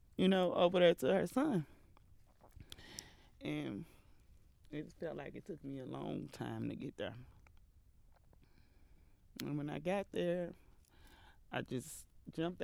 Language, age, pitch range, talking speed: English, 30-49, 90-150 Hz, 135 wpm